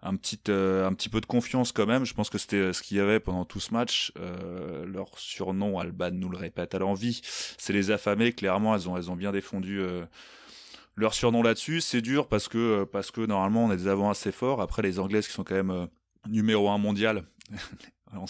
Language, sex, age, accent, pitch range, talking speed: French, male, 20-39, French, 95-115 Hz, 235 wpm